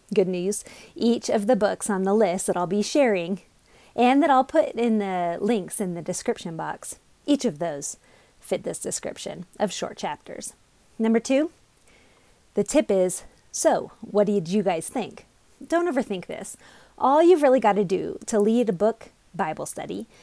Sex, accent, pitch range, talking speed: female, American, 195-260 Hz, 175 wpm